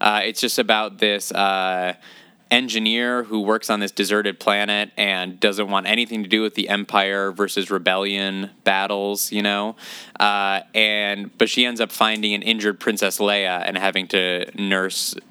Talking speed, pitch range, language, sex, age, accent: 165 wpm, 100-115 Hz, English, male, 20-39, American